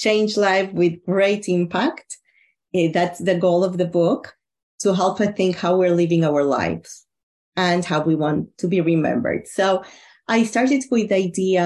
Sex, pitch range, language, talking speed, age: female, 175-215 Hz, English, 170 wpm, 30-49